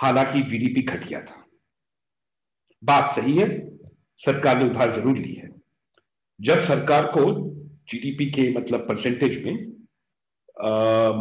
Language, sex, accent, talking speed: Hindi, male, native, 110 wpm